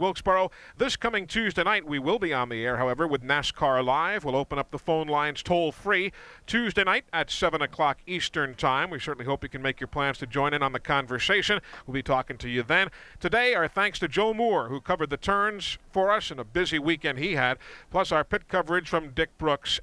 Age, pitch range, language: 40-59, 140-200 Hz, English